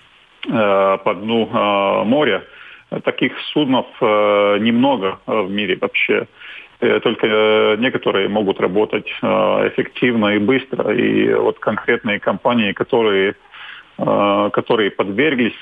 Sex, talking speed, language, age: male, 90 wpm, Russian, 40-59